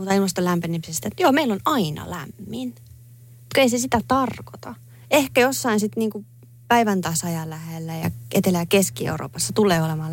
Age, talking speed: 30-49, 155 wpm